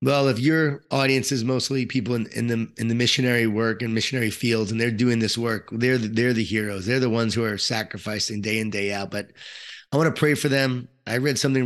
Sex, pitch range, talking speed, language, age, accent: male, 110-130 Hz, 240 wpm, English, 30-49, American